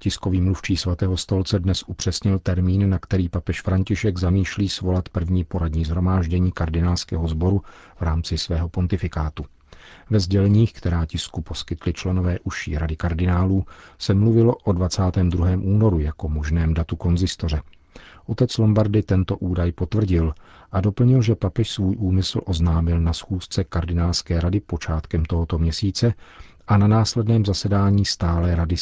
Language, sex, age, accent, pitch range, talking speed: Czech, male, 40-59, native, 85-100 Hz, 135 wpm